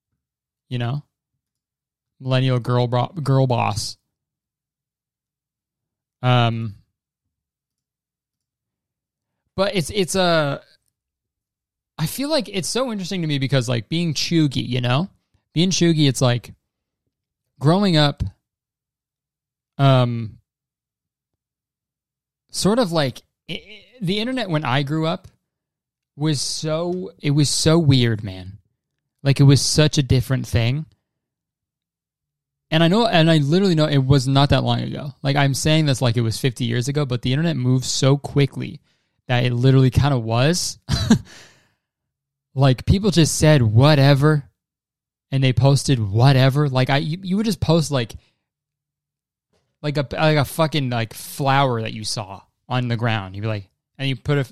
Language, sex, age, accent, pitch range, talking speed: English, male, 20-39, American, 125-155 Hz, 145 wpm